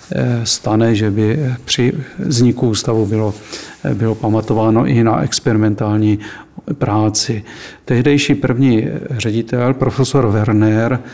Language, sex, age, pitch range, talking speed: Czech, male, 40-59, 115-130 Hz, 95 wpm